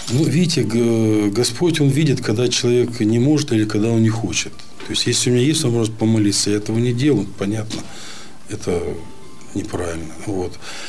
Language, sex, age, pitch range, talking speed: Russian, male, 40-59, 100-125 Hz, 165 wpm